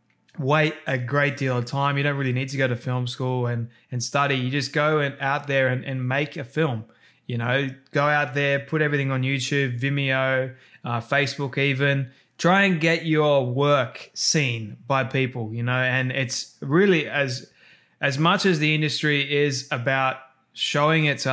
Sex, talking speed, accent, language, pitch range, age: male, 185 wpm, Australian, English, 130-150 Hz, 20-39